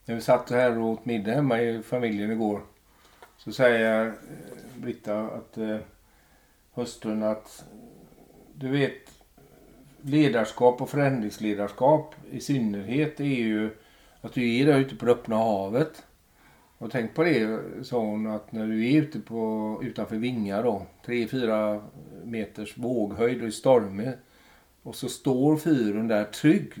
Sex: male